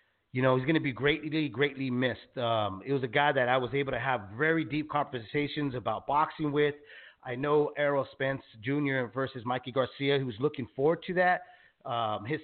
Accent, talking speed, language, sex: American, 205 wpm, English, male